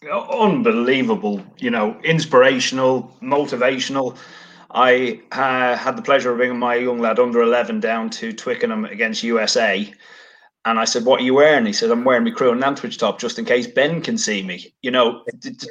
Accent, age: British, 30-49